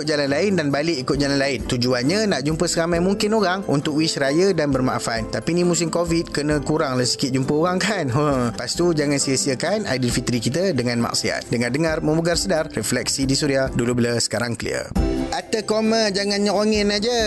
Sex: male